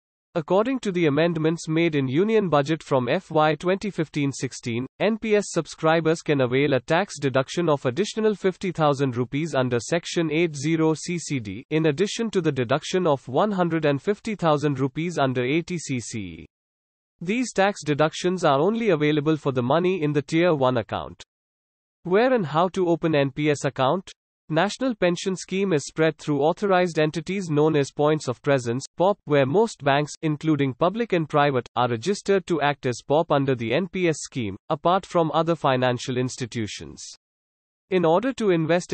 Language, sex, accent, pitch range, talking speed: English, male, Indian, 140-175 Hz, 150 wpm